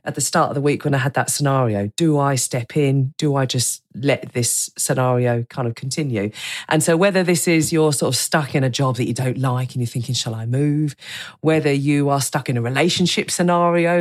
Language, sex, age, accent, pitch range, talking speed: English, female, 40-59, British, 130-165 Hz, 230 wpm